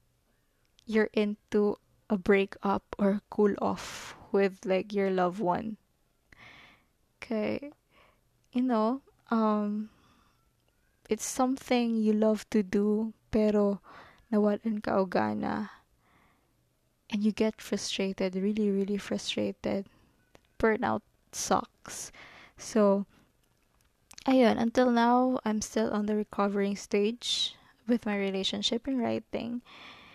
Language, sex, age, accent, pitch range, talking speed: Filipino, female, 20-39, native, 205-230 Hz, 100 wpm